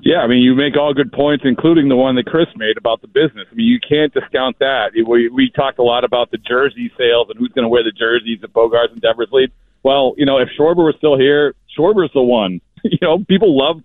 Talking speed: 250 wpm